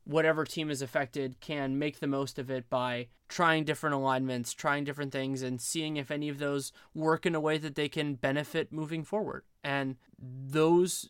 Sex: male